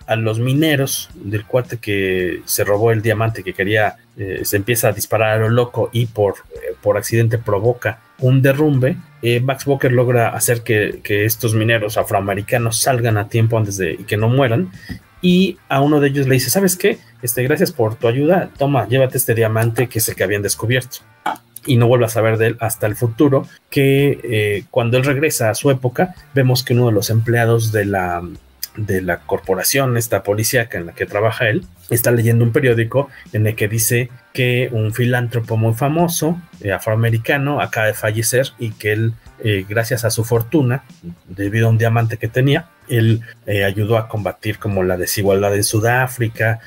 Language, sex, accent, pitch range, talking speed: Spanish, male, Mexican, 105-130 Hz, 190 wpm